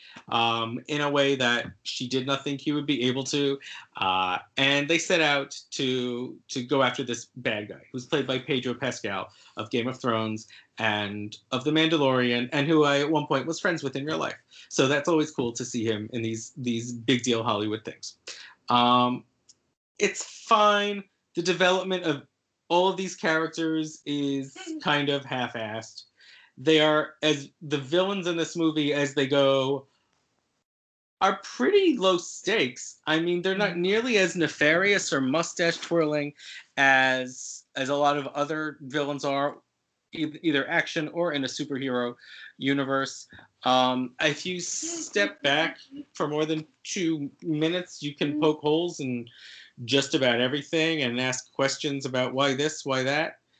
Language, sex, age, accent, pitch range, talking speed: English, male, 30-49, American, 125-160 Hz, 160 wpm